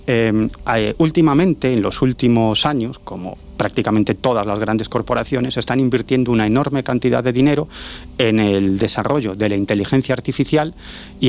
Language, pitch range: Spanish, 110-150 Hz